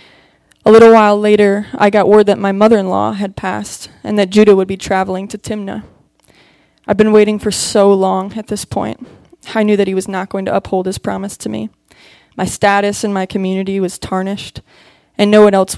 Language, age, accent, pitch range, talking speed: English, 20-39, American, 190-215 Hz, 200 wpm